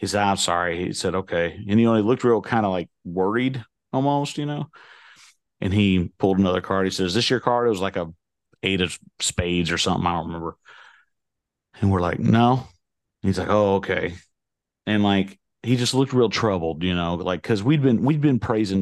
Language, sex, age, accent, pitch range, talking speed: English, male, 40-59, American, 90-110 Hz, 210 wpm